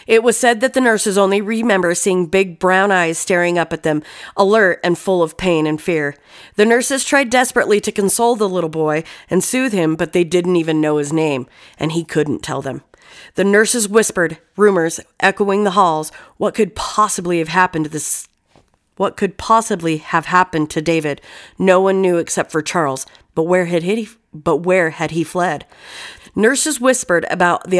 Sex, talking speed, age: female, 190 wpm, 40-59